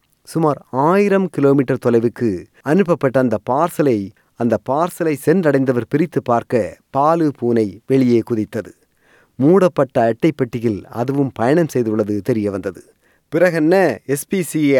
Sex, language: male, Tamil